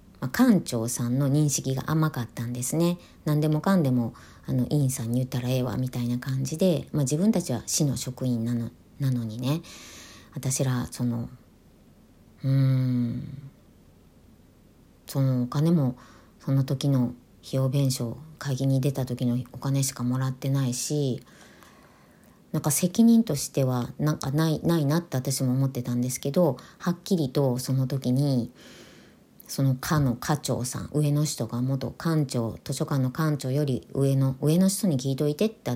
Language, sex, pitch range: Japanese, male, 125-150 Hz